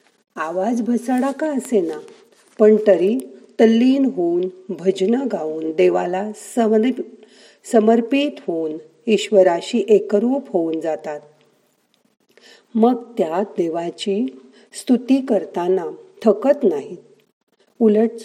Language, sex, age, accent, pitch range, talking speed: Marathi, female, 40-59, native, 190-235 Hz, 90 wpm